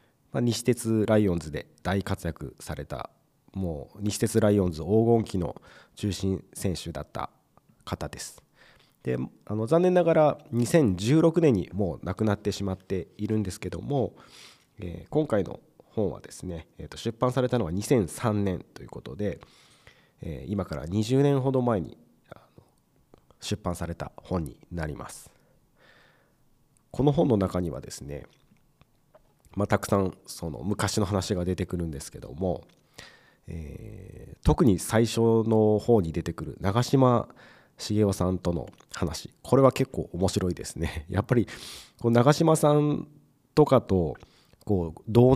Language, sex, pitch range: Japanese, male, 90-125 Hz